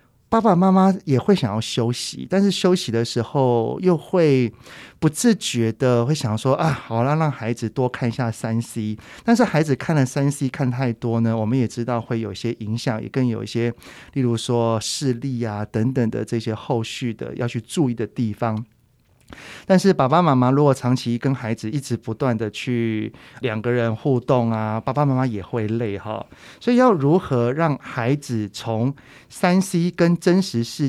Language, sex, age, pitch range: Chinese, male, 30-49, 115-145 Hz